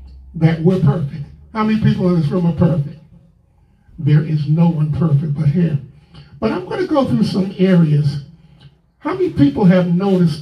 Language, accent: English, American